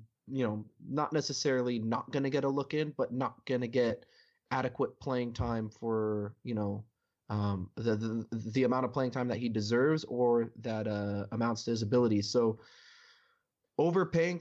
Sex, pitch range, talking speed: male, 115-135 Hz, 175 wpm